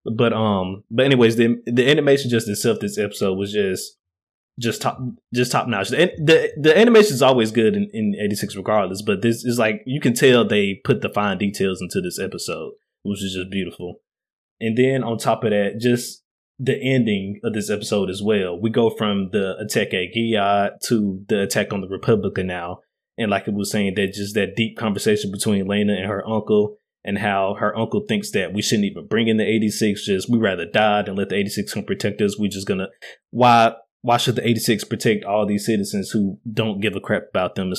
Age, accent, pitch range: 20-39, American, 100-120 Hz